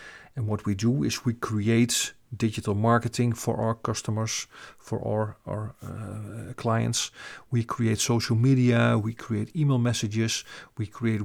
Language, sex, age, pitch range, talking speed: English, male, 40-59, 110-125 Hz, 145 wpm